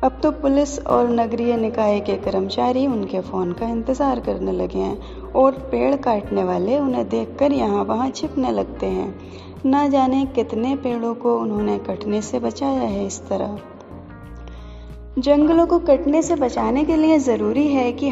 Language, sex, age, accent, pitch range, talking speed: Hindi, female, 20-39, native, 185-270 Hz, 160 wpm